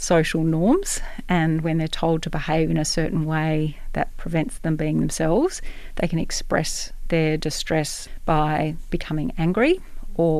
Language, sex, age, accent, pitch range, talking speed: English, female, 40-59, Australian, 160-190 Hz, 150 wpm